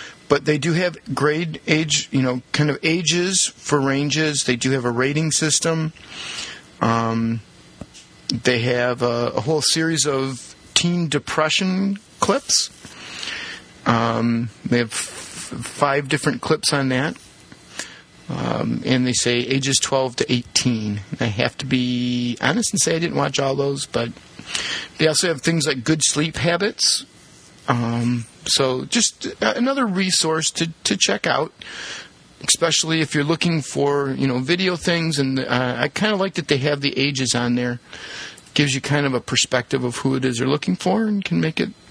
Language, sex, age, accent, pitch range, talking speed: English, male, 40-59, American, 125-160 Hz, 170 wpm